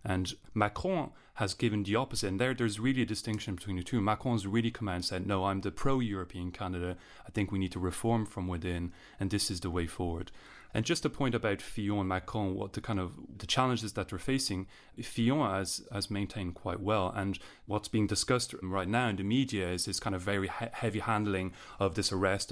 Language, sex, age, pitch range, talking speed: English, male, 30-49, 95-110 Hz, 220 wpm